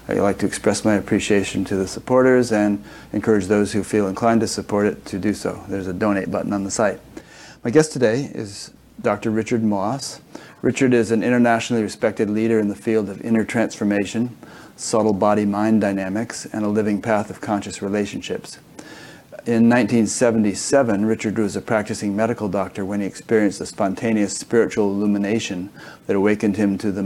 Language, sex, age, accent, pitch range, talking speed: English, male, 40-59, American, 100-115 Hz, 170 wpm